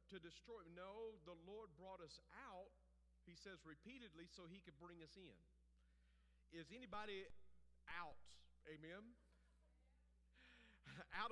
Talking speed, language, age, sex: 115 wpm, English, 50-69, male